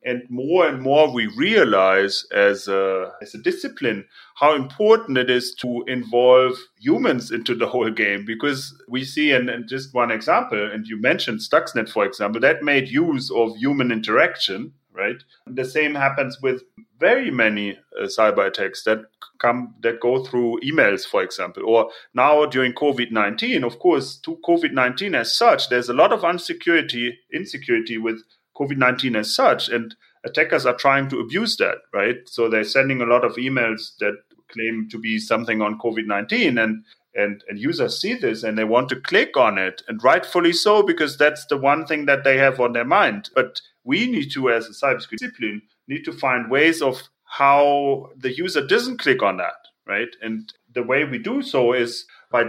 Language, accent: English, German